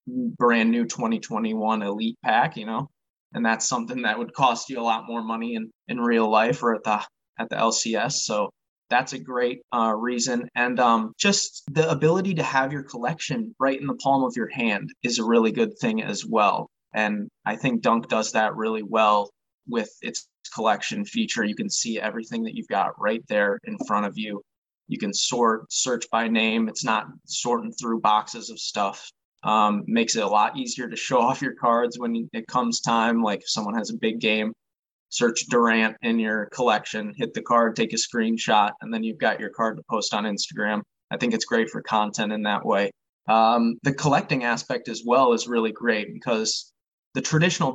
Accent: American